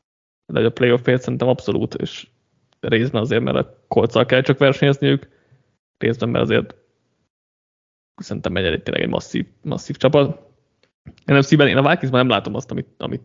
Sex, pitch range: male, 115-130 Hz